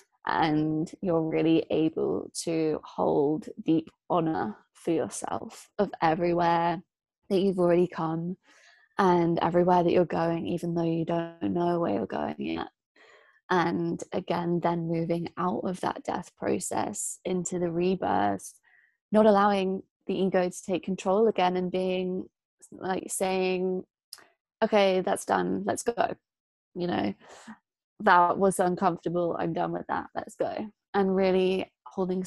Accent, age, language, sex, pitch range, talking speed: British, 20-39, English, female, 170-190 Hz, 135 wpm